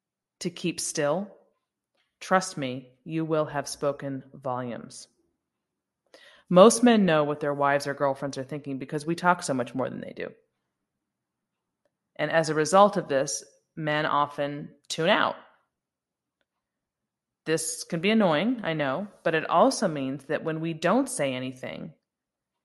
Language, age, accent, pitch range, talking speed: English, 20-39, American, 140-185 Hz, 145 wpm